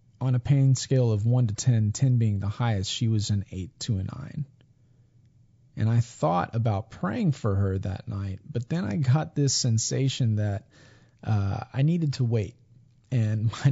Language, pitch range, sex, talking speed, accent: English, 115-135 Hz, male, 185 wpm, American